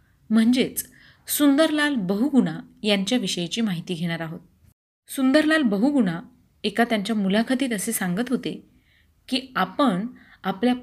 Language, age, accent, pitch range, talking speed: Marathi, 30-49, native, 195-255 Hz, 100 wpm